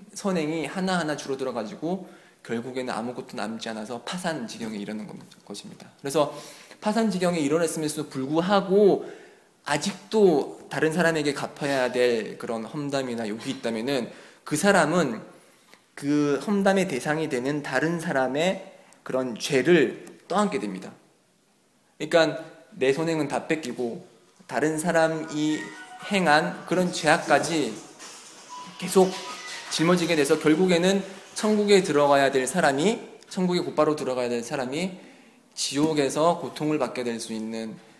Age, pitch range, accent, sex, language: 20-39, 130-180 Hz, native, male, Korean